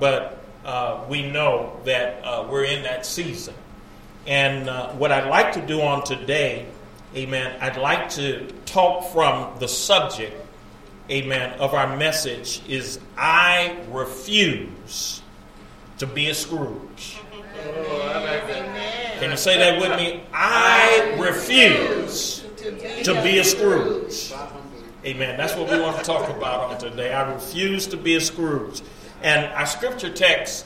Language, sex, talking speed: English, male, 135 wpm